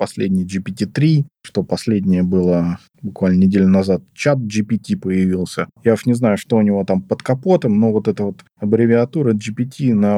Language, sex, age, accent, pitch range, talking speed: Russian, male, 20-39, native, 105-140 Hz, 165 wpm